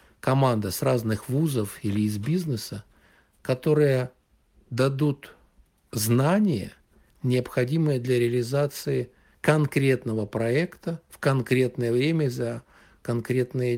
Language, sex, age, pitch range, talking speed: Russian, male, 60-79, 110-135 Hz, 85 wpm